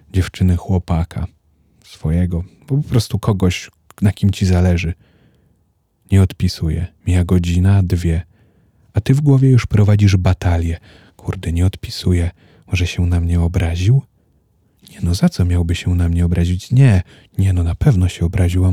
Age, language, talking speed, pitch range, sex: 30-49, Polish, 150 wpm, 90-115 Hz, male